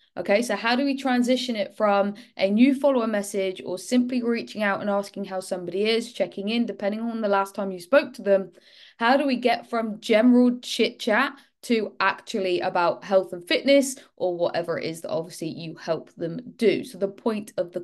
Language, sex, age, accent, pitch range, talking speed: English, female, 20-39, British, 190-240 Hz, 205 wpm